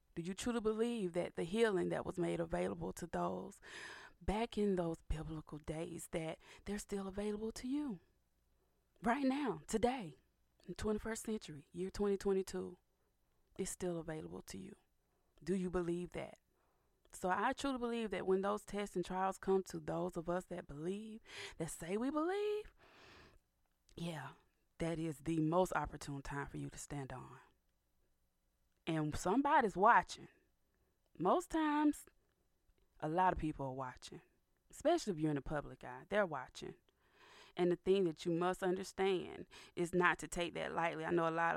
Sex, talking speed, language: female, 160 wpm, English